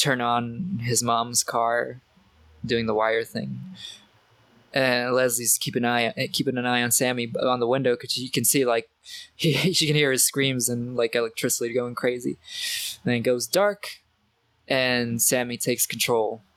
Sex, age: male, 20-39